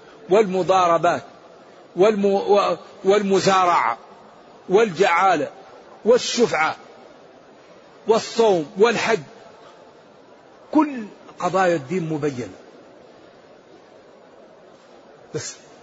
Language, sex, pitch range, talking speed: Arabic, male, 170-210 Hz, 40 wpm